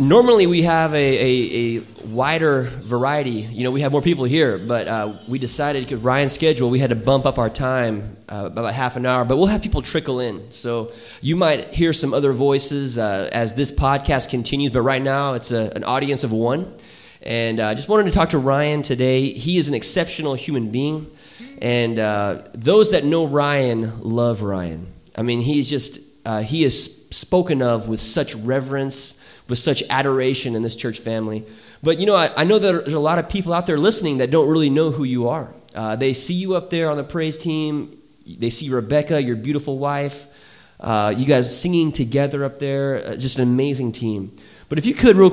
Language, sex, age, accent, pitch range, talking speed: English, male, 20-39, American, 120-160 Hz, 210 wpm